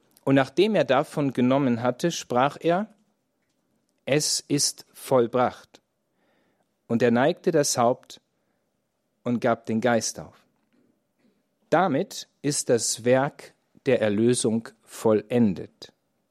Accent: German